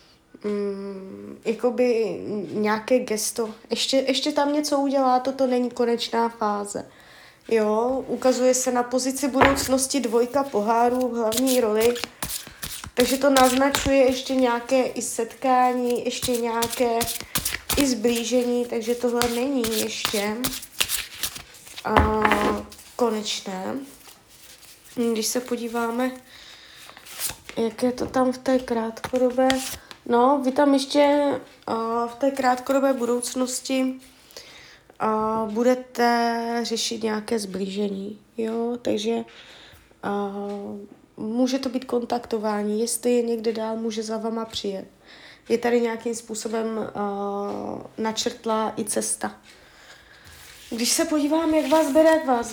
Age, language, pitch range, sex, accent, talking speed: 20-39, Czech, 225-260 Hz, female, native, 100 wpm